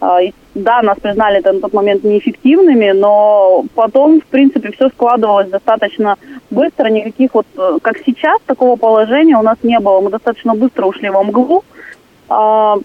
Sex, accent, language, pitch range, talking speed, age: female, native, Russian, 195-255 Hz, 155 wpm, 20-39